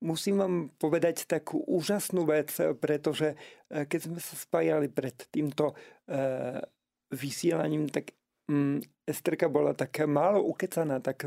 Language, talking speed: Slovak, 110 wpm